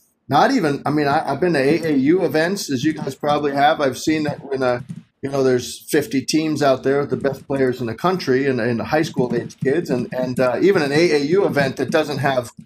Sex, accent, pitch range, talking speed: male, American, 125-150 Hz, 235 wpm